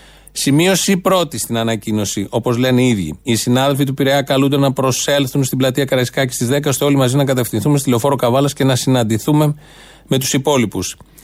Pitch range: 130-160 Hz